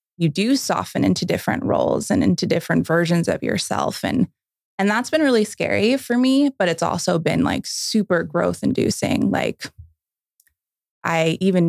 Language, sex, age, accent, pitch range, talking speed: English, female, 20-39, American, 165-185 Hz, 160 wpm